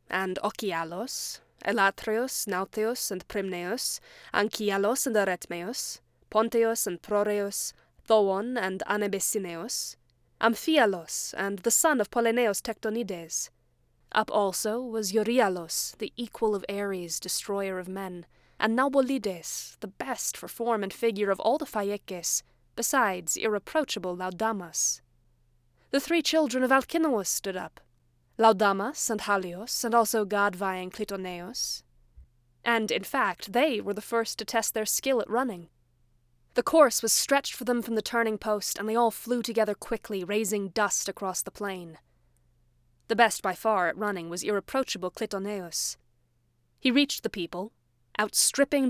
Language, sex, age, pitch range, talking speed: English, female, 20-39, 180-230 Hz, 135 wpm